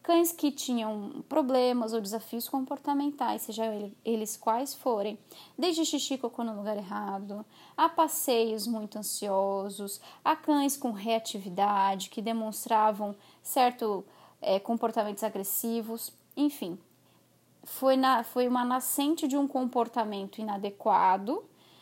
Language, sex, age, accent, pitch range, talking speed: Portuguese, female, 20-39, Brazilian, 215-275 Hz, 115 wpm